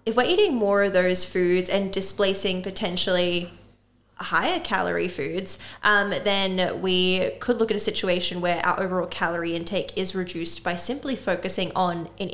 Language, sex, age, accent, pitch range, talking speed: English, female, 10-29, Australian, 175-210 Hz, 160 wpm